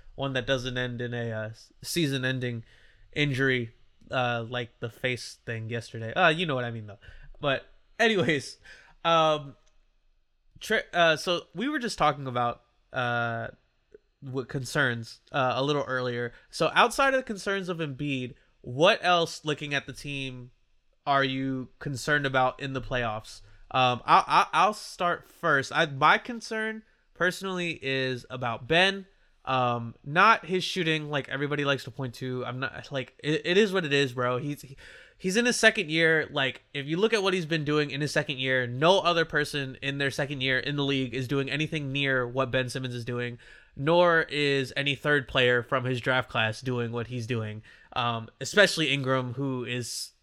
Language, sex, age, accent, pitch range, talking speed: English, male, 20-39, American, 125-160 Hz, 180 wpm